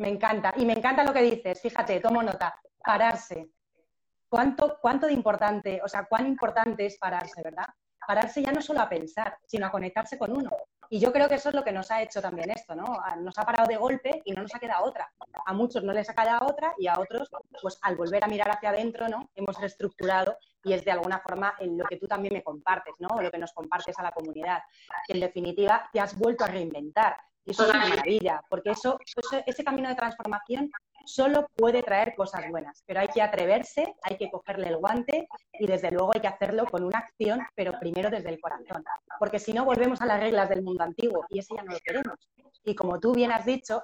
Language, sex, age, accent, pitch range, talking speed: Spanish, female, 30-49, Spanish, 190-235 Hz, 225 wpm